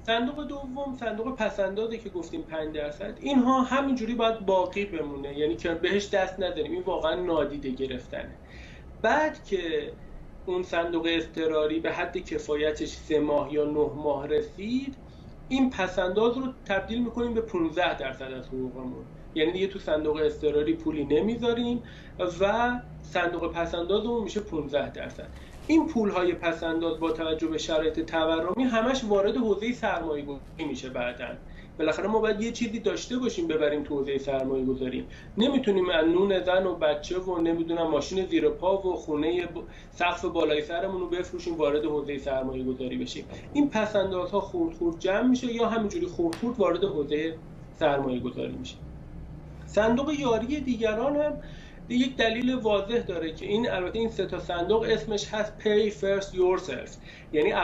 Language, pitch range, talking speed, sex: Persian, 155-225 Hz, 150 wpm, male